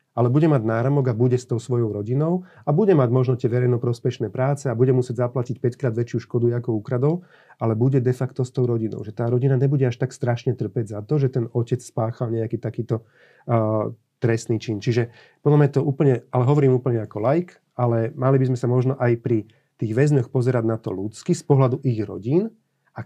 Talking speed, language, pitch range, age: 215 wpm, Slovak, 115-135 Hz, 40-59